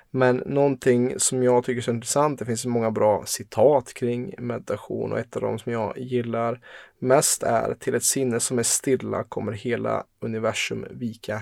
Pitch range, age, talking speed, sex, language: 110-130 Hz, 20-39, 185 wpm, male, Swedish